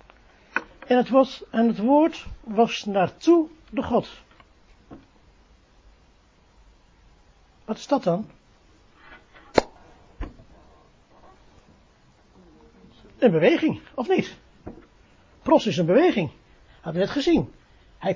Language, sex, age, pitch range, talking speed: Dutch, male, 60-79, 195-280 Hz, 90 wpm